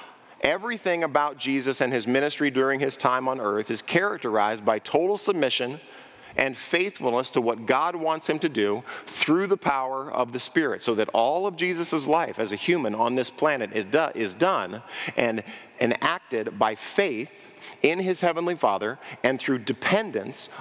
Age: 40-59